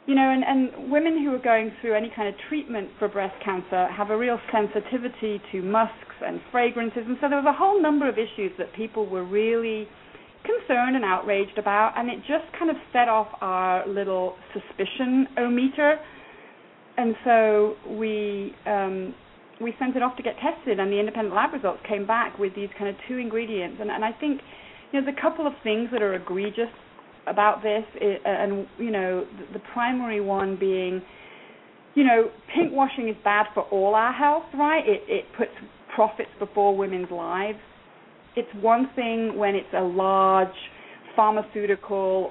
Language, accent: English, British